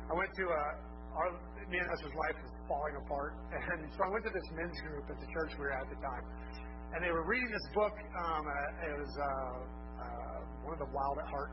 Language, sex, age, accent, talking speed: English, male, 30-49, American, 225 wpm